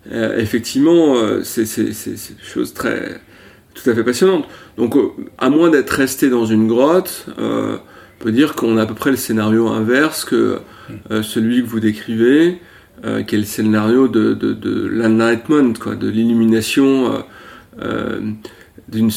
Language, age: French, 40-59